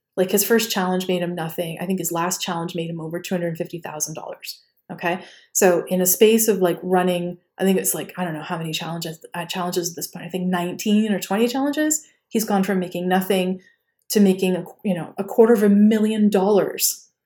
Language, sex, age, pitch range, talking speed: English, female, 20-39, 180-210 Hz, 220 wpm